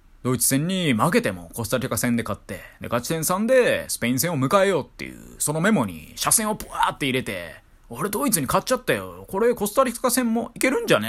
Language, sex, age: Japanese, male, 20-39